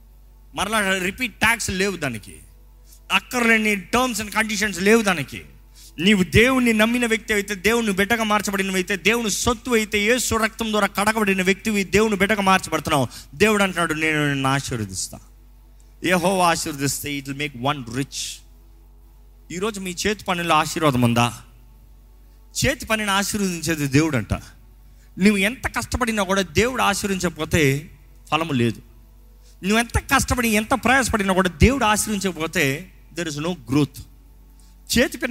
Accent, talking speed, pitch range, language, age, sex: native, 125 wpm, 135-215 Hz, Telugu, 30-49, male